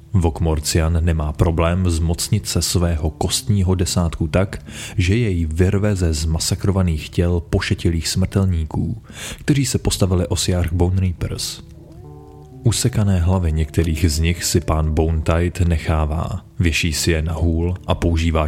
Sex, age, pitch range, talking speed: male, 30-49, 80-95 Hz, 130 wpm